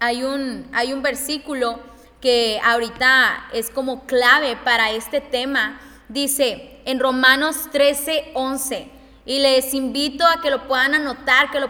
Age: 10-29